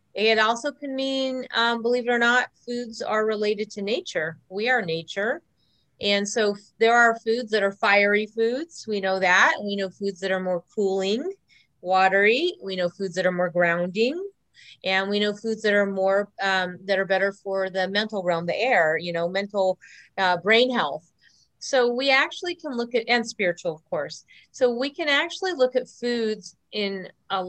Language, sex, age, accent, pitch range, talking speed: English, female, 30-49, American, 190-235 Hz, 180 wpm